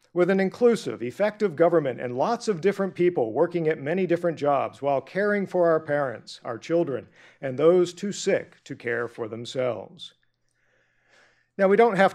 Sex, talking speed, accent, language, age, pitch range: male, 170 wpm, American, English, 50-69, 140-180 Hz